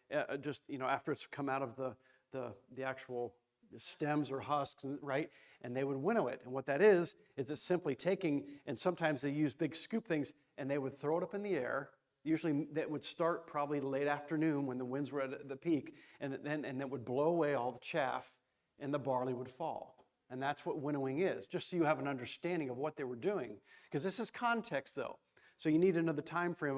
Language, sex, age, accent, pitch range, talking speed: English, male, 40-59, American, 135-160 Hz, 230 wpm